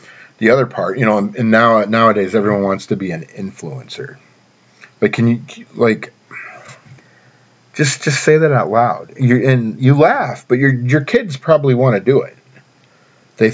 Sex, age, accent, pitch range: male, 40-59, American, 100-130 Hz